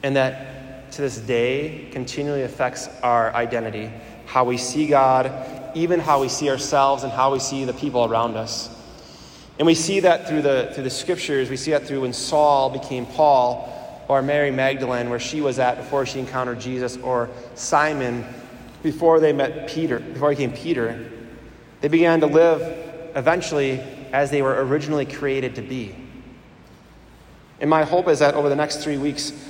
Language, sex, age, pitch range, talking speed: English, male, 20-39, 125-150 Hz, 175 wpm